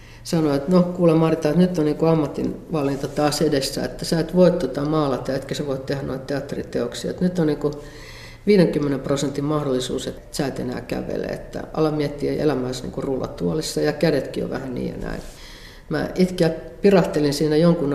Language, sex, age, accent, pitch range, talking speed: Finnish, female, 50-69, native, 135-160 Hz, 180 wpm